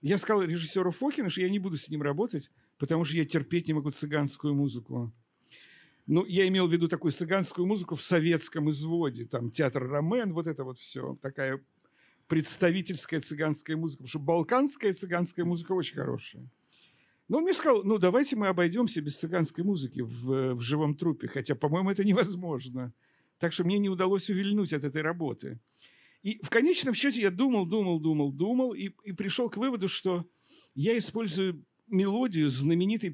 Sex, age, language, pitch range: male, 50-69, Russian, 150-200 Hz